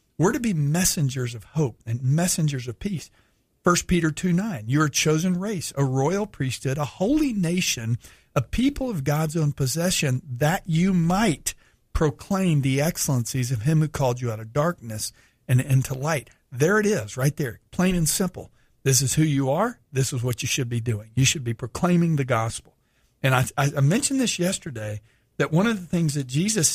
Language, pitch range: English, 130-185 Hz